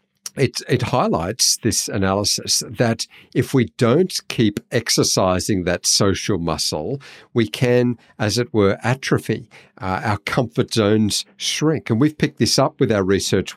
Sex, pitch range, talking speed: male, 95-120 Hz, 145 wpm